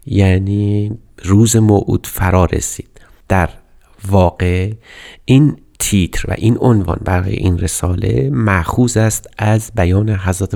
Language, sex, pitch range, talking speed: Persian, male, 95-115 Hz, 115 wpm